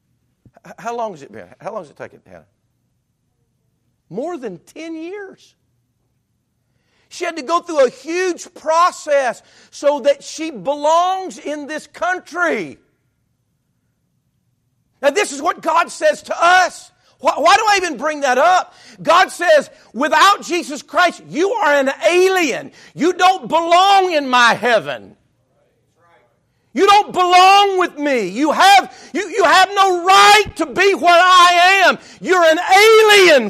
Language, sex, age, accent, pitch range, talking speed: English, male, 50-69, American, 250-360 Hz, 145 wpm